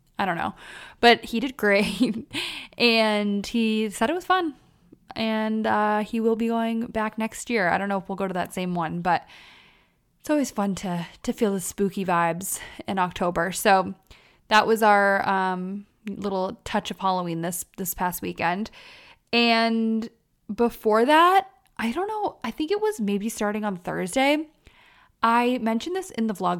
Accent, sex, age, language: American, female, 20-39, English